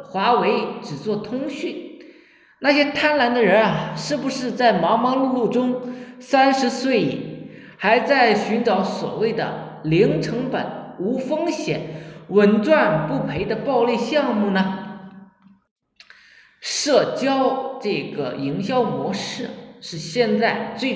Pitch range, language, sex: 210-265 Hz, Chinese, male